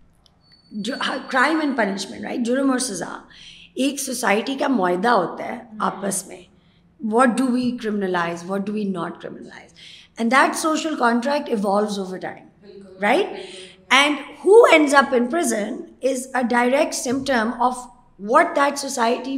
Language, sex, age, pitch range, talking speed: Urdu, female, 20-39, 225-280 Hz, 140 wpm